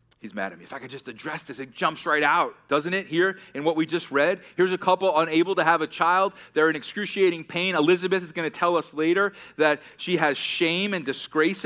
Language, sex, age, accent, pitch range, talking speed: English, male, 30-49, American, 165-190 Hz, 240 wpm